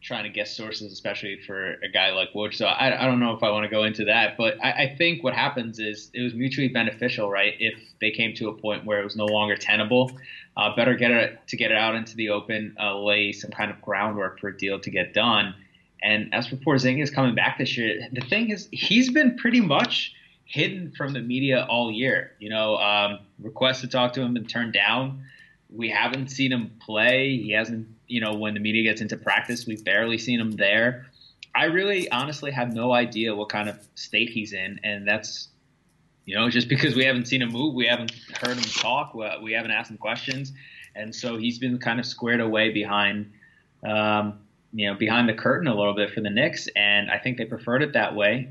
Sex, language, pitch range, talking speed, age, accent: male, English, 105-130 Hz, 225 wpm, 20-39, American